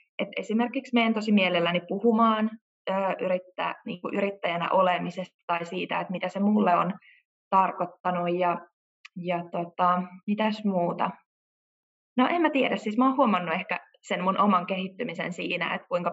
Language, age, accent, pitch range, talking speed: Finnish, 20-39, native, 180-230 Hz, 145 wpm